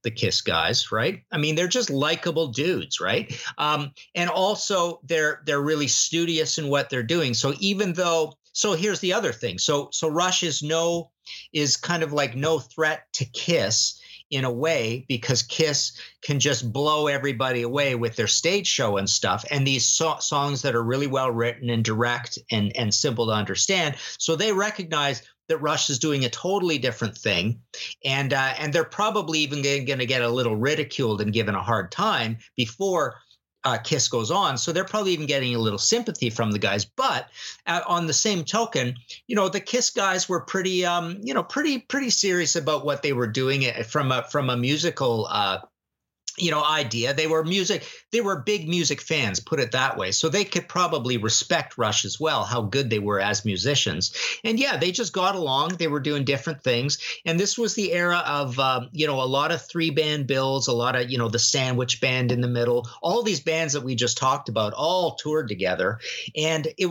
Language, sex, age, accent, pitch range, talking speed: English, male, 50-69, American, 125-170 Hz, 205 wpm